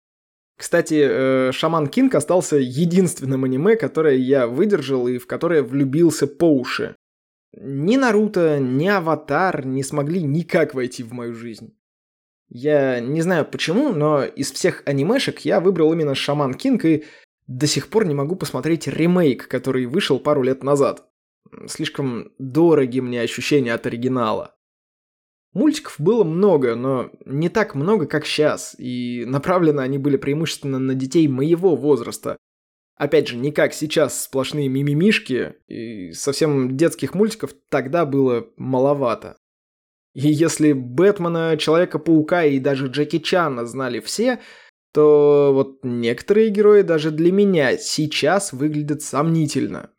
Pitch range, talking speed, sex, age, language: 130-165 Hz, 130 wpm, male, 20-39, Russian